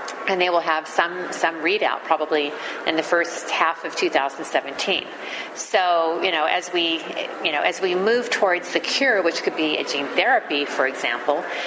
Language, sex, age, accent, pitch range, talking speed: English, female, 40-59, American, 155-190 Hz, 180 wpm